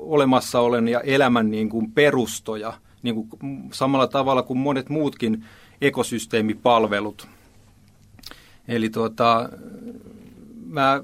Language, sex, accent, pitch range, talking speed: Finnish, male, native, 115-145 Hz, 90 wpm